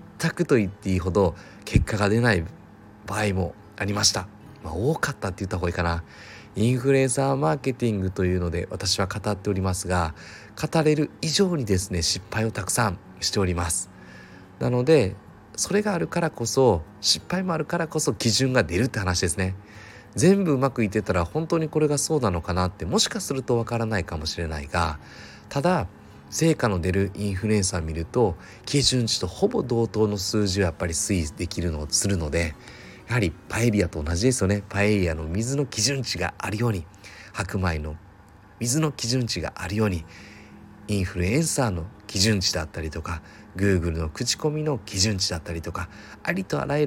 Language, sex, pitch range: Japanese, male, 90-120 Hz